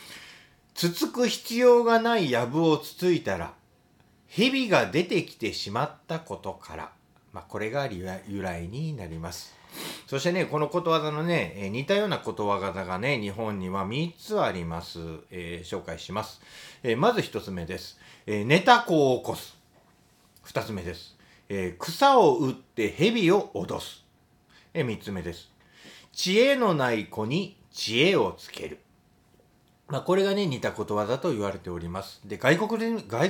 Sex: male